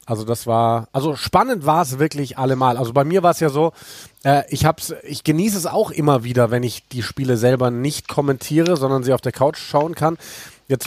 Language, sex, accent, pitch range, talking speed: German, male, German, 125-150 Hz, 220 wpm